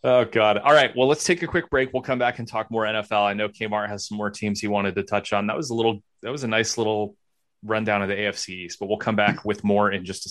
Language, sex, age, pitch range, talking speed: English, male, 30-49, 100-125 Hz, 305 wpm